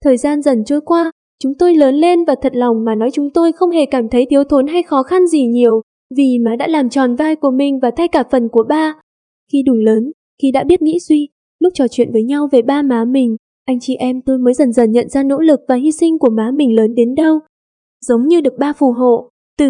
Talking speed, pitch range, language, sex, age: 260 wpm, 245-310 Hz, Vietnamese, female, 10-29